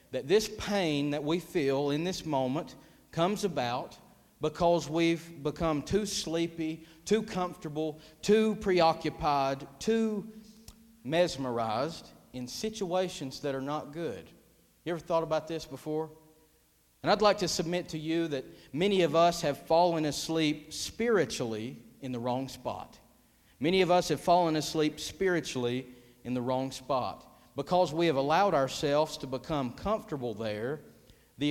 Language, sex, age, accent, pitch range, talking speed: English, male, 50-69, American, 130-170 Hz, 140 wpm